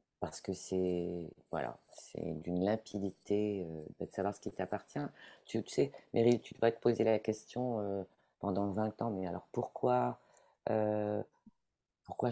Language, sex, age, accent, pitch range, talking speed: French, female, 40-59, French, 95-115 Hz, 155 wpm